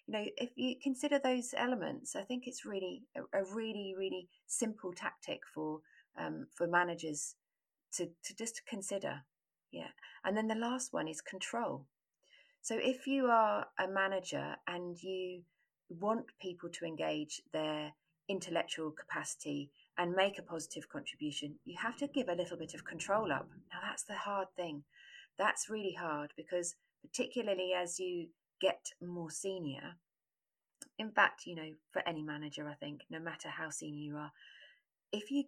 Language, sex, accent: English, female, British